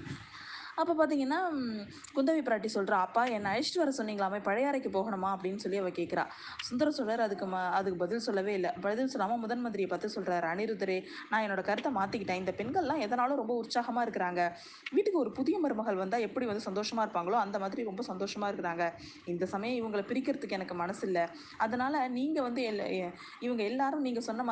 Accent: native